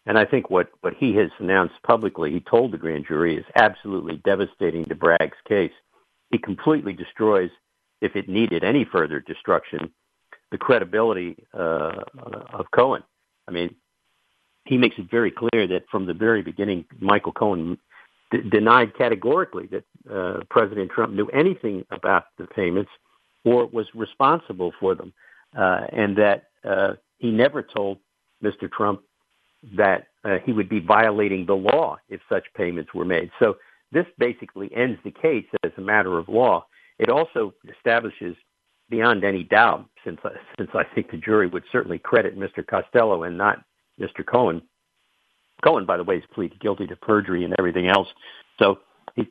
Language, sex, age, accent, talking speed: English, male, 50-69, American, 165 wpm